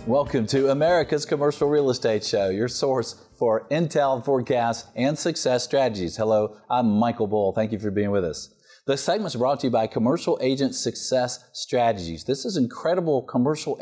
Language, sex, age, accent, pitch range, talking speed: English, male, 40-59, American, 105-135 Hz, 180 wpm